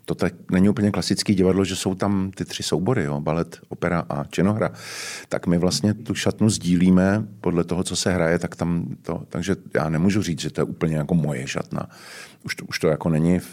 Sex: male